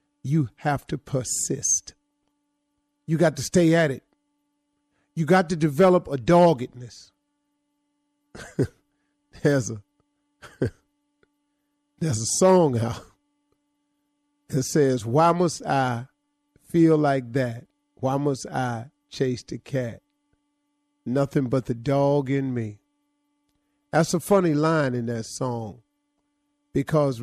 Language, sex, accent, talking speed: English, male, American, 110 wpm